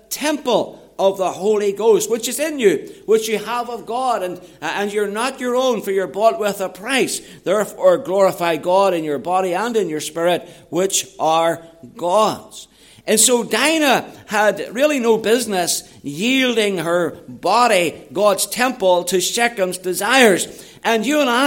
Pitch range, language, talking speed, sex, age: 185-235 Hz, English, 160 wpm, male, 60-79